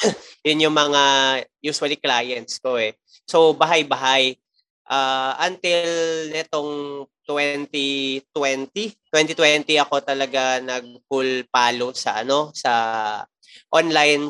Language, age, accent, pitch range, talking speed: English, 20-39, Filipino, 130-150 Hz, 90 wpm